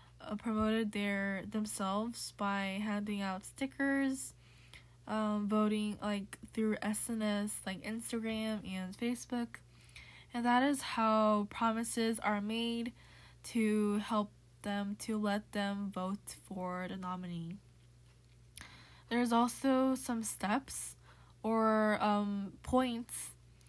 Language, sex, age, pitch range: Korean, female, 10-29, 195-230 Hz